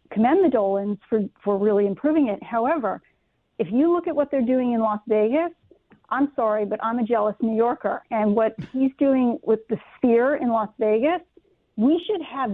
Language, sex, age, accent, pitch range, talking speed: English, female, 40-59, American, 220-275 Hz, 190 wpm